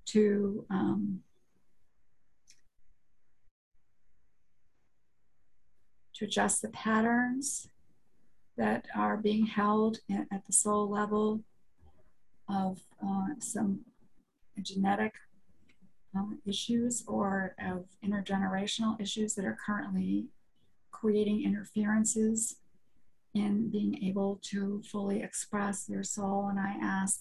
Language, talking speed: English, 90 wpm